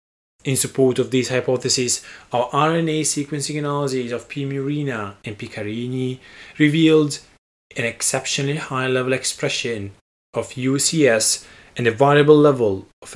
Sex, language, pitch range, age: male, English, 110-140 Hz, 30-49